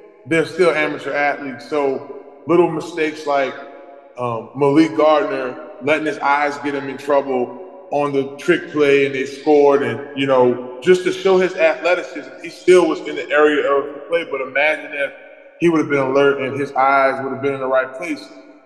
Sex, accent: male, American